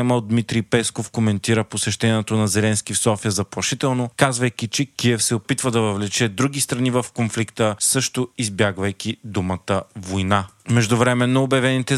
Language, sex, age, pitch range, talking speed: Bulgarian, male, 30-49, 110-130 Hz, 135 wpm